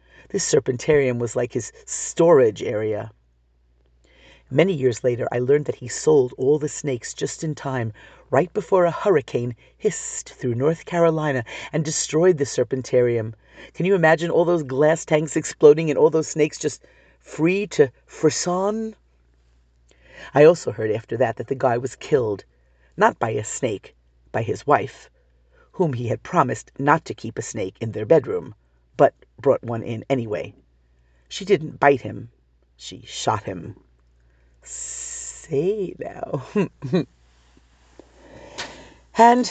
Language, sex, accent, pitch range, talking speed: English, female, American, 110-160 Hz, 140 wpm